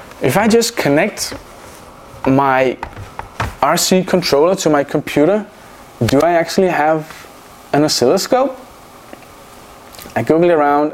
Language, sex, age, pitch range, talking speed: English, male, 20-39, 135-185 Hz, 105 wpm